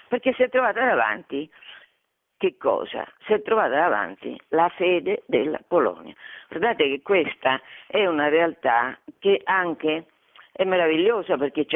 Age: 50-69